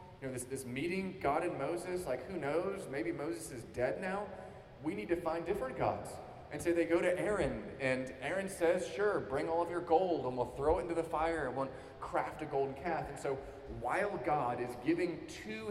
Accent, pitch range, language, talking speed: American, 125-165 Hz, English, 220 wpm